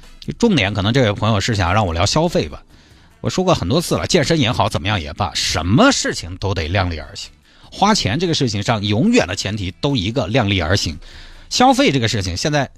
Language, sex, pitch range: Chinese, male, 100-155 Hz